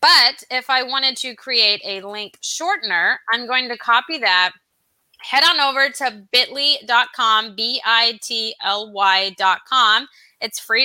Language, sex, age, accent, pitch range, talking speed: English, female, 20-39, American, 215-270 Hz, 120 wpm